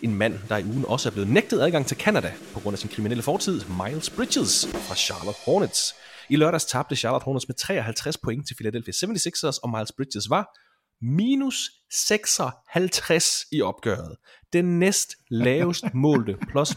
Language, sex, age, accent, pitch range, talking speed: Danish, male, 30-49, native, 105-165 Hz, 170 wpm